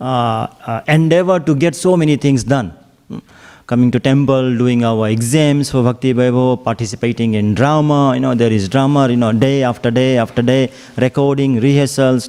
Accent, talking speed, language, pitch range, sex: Indian, 170 wpm, English, 125-165 Hz, male